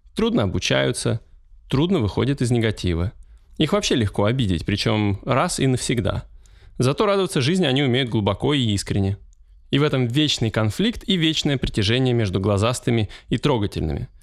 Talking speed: 145 wpm